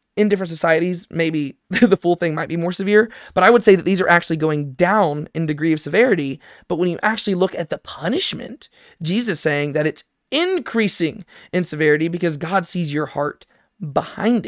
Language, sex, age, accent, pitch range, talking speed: English, male, 20-39, American, 155-205 Hz, 195 wpm